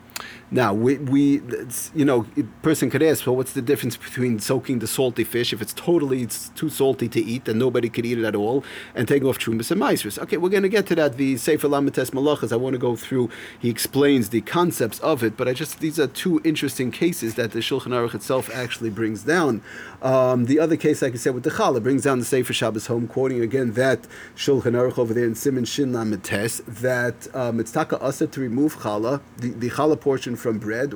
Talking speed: 230 wpm